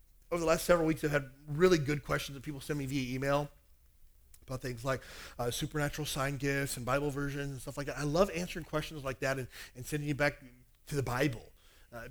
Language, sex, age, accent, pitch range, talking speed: English, male, 40-59, American, 125-175 Hz, 225 wpm